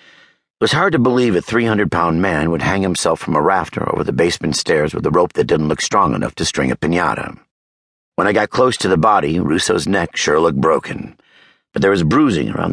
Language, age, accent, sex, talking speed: English, 50-69, American, male, 220 wpm